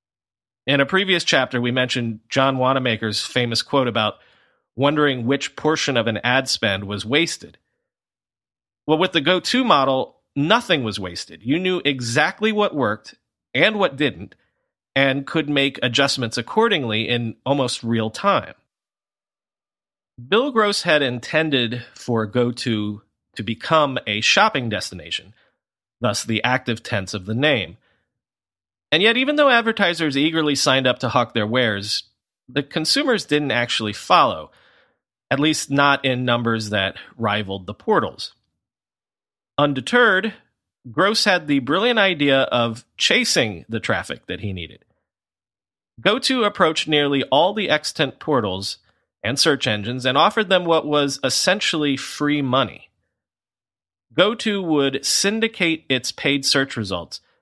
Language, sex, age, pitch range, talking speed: English, male, 40-59, 115-155 Hz, 135 wpm